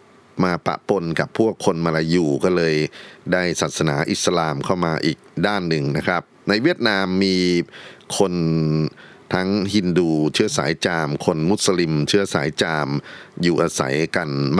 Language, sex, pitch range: Thai, male, 80-95 Hz